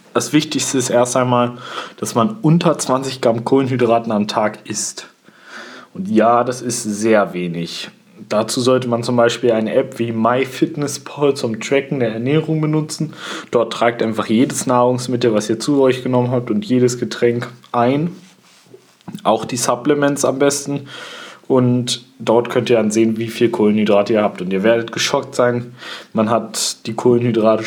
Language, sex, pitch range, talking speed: English, male, 110-130 Hz, 160 wpm